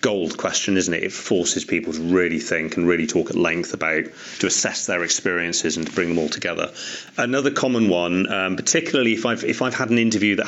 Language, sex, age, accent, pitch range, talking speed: English, male, 30-49, British, 85-110 Hz, 225 wpm